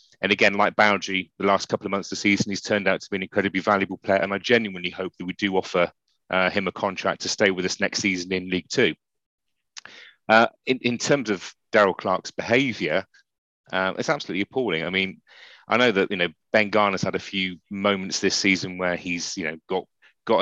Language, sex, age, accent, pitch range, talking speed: English, male, 30-49, British, 95-105 Hz, 220 wpm